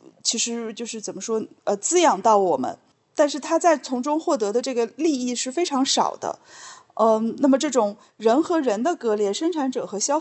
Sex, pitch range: female, 200-270 Hz